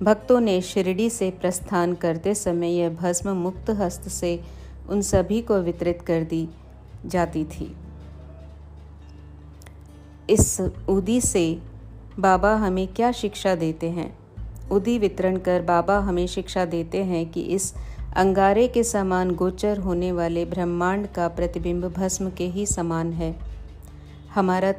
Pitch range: 165-195 Hz